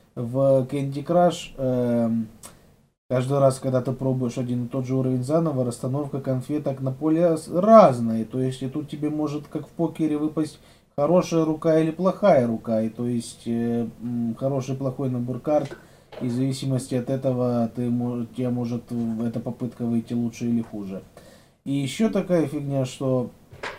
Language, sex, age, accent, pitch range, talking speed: Russian, male, 20-39, native, 125-180 Hz, 150 wpm